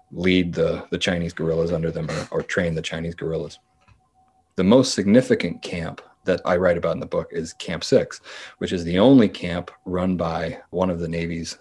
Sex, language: male, English